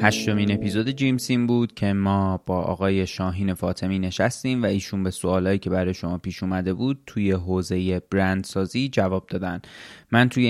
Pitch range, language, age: 95-115 Hz, Persian, 20-39